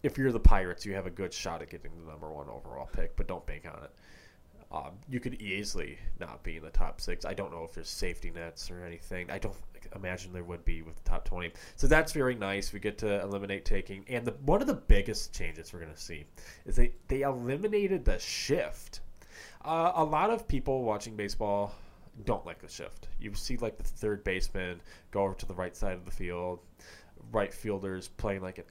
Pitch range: 85-105 Hz